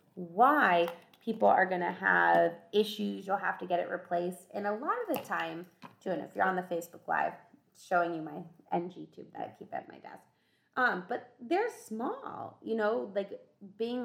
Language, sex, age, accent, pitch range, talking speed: English, female, 20-39, American, 180-240 Hz, 195 wpm